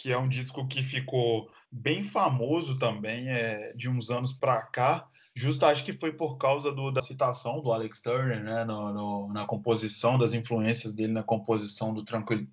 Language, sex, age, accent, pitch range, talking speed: Portuguese, male, 10-29, Brazilian, 110-130 Hz, 185 wpm